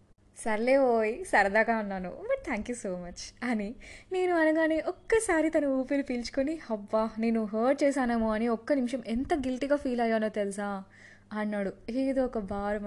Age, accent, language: 20-39, native, Telugu